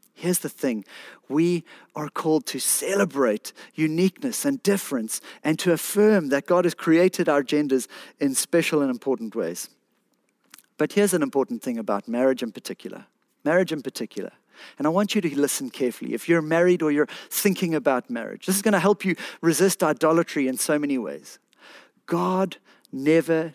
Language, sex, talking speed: English, male, 170 wpm